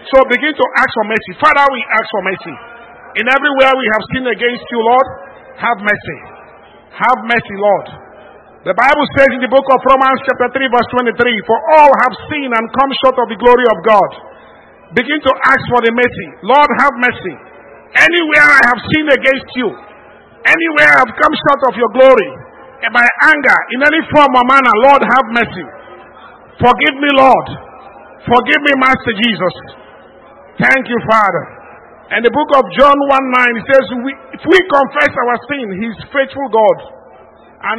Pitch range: 210-265 Hz